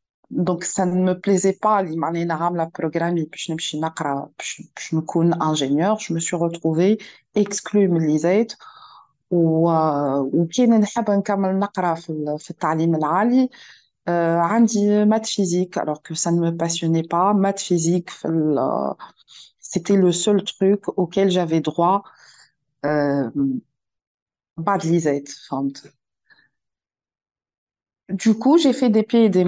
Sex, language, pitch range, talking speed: female, Arabic, 160-200 Hz, 135 wpm